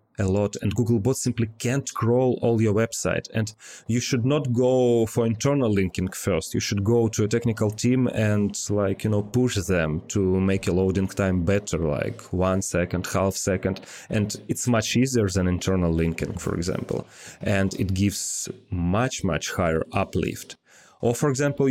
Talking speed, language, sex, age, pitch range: 170 wpm, English, male, 30-49, 95-115 Hz